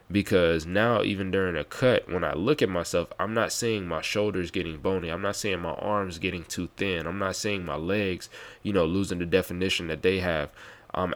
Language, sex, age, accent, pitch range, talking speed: English, male, 20-39, American, 90-105 Hz, 215 wpm